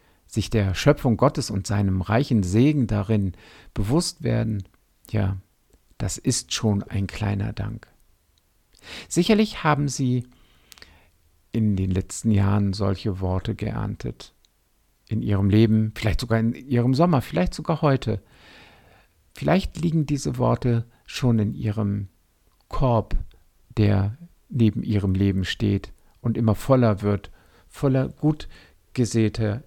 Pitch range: 100-130 Hz